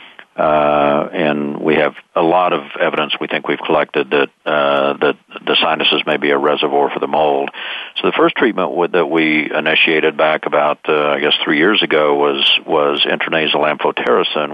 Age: 50-69